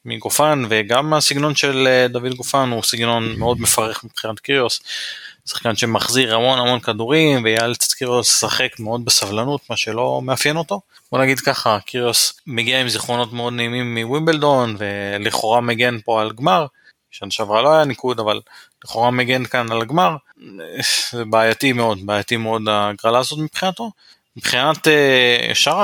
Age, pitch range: 20-39, 110-140 Hz